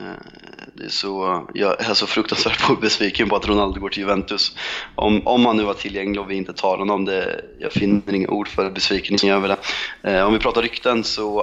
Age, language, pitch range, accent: 20-39, Swedish, 95-110 Hz, native